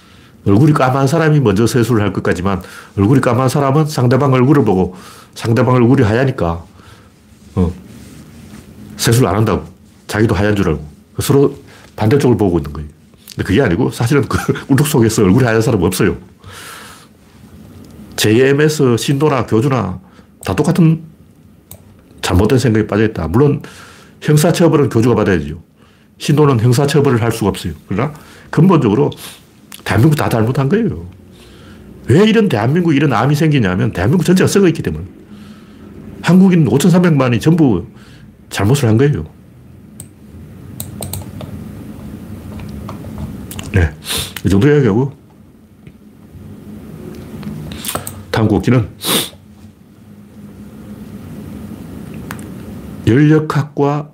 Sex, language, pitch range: male, Korean, 100-140 Hz